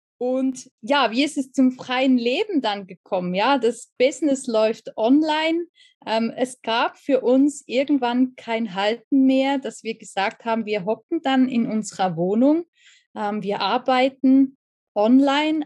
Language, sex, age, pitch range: German, female, 20-39, 220-280 Hz